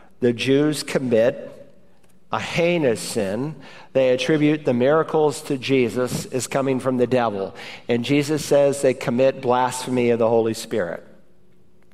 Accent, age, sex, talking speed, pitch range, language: American, 50-69, male, 135 wpm, 130-155 Hz, English